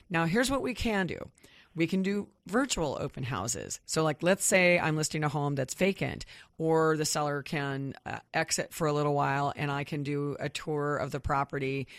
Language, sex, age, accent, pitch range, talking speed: English, female, 30-49, American, 140-160 Hz, 205 wpm